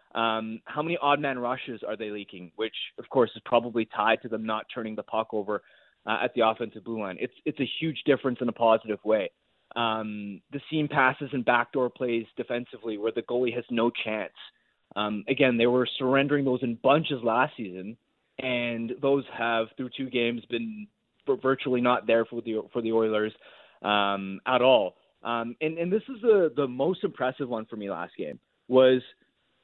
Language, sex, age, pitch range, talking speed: English, male, 20-39, 115-140 Hz, 190 wpm